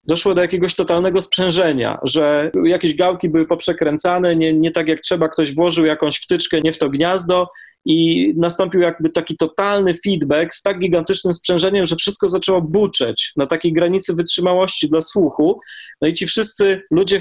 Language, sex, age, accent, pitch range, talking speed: Polish, male, 20-39, native, 160-195 Hz, 165 wpm